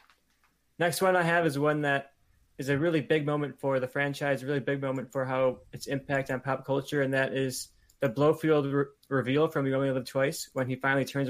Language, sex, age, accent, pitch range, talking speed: English, male, 20-39, American, 130-140 Hz, 225 wpm